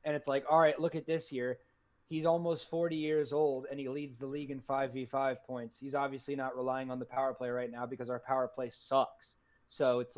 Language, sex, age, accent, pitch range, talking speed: English, male, 20-39, American, 130-190 Hz, 230 wpm